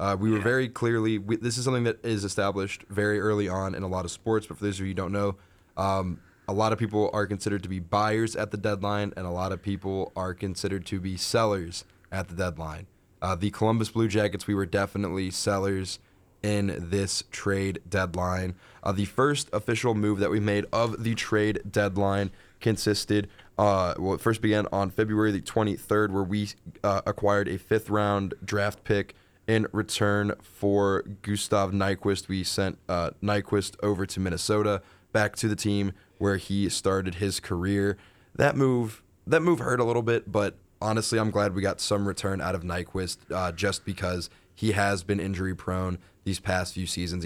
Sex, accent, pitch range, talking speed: male, American, 95-105 Hz, 185 wpm